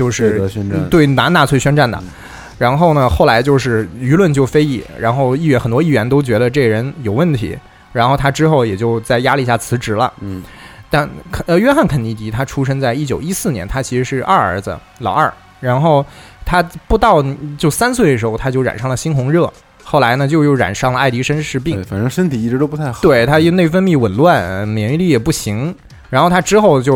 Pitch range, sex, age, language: 115-155 Hz, male, 20-39, Chinese